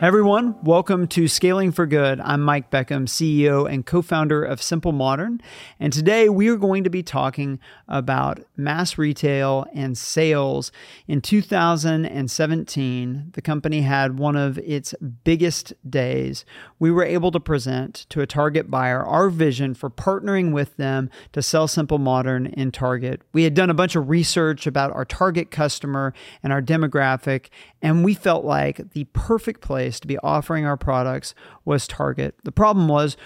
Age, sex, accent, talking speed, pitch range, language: 40-59, male, American, 165 wpm, 135-165 Hz, English